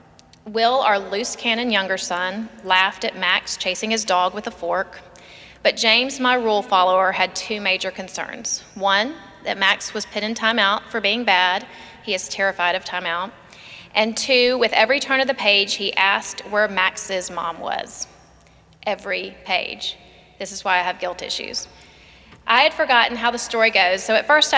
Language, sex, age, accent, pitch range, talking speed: English, female, 30-49, American, 185-225 Hz, 175 wpm